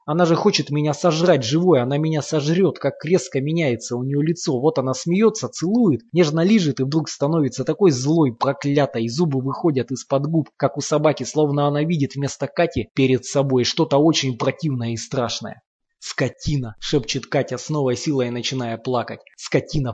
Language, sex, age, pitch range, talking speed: Russian, male, 20-39, 125-155 Hz, 170 wpm